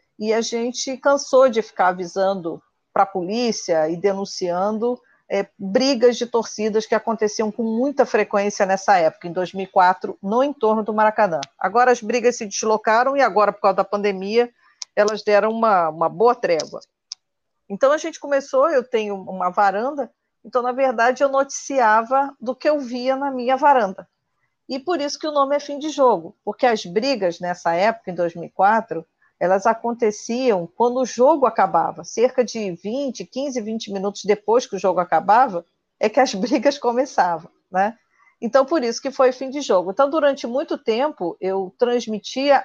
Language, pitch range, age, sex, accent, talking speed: Portuguese, 200-270 Hz, 40-59, female, Brazilian, 170 wpm